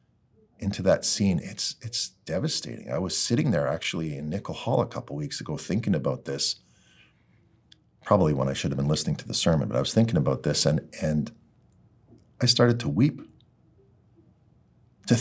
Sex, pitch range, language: male, 95-125 Hz, English